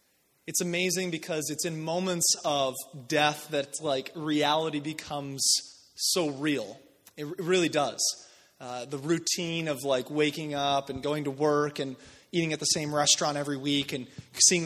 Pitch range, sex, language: 150-195 Hz, male, English